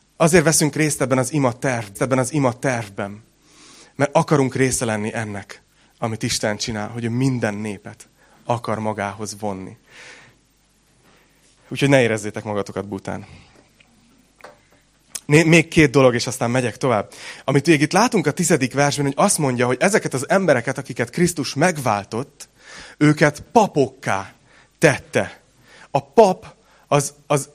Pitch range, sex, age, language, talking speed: 115-150 Hz, male, 30-49, Hungarian, 135 wpm